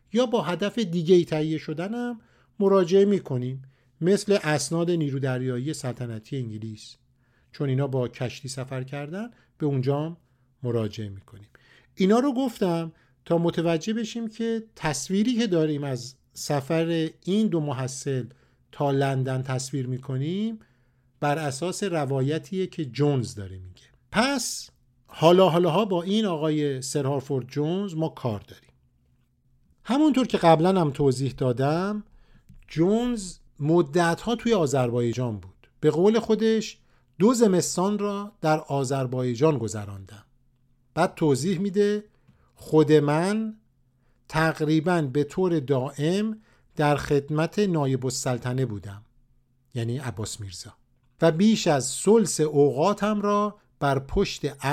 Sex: male